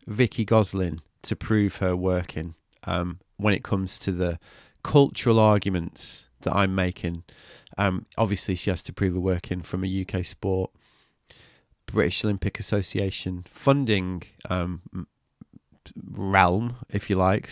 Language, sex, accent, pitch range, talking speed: English, male, British, 95-115 Hz, 130 wpm